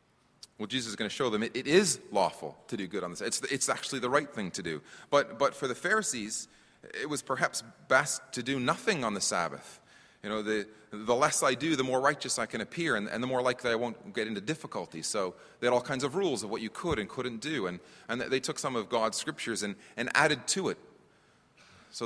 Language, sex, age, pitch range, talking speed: English, male, 30-49, 110-140 Hz, 250 wpm